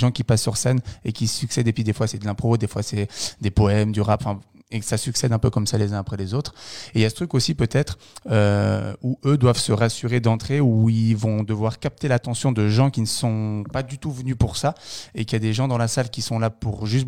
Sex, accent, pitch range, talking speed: male, French, 110-130 Hz, 290 wpm